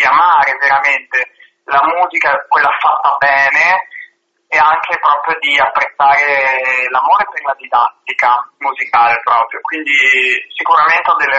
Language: Italian